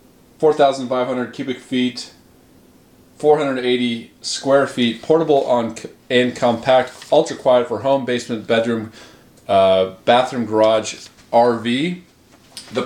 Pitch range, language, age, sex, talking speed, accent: 115-140 Hz, English, 30-49, male, 105 wpm, American